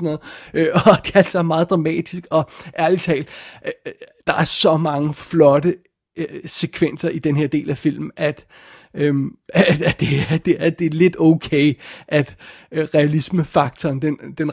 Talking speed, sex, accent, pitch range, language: 170 wpm, male, native, 150-175 Hz, Danish